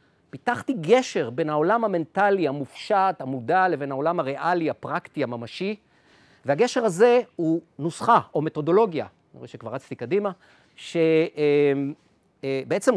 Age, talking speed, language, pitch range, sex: 40-59, 110 wpm, Hebrew, 140-210 Hz, male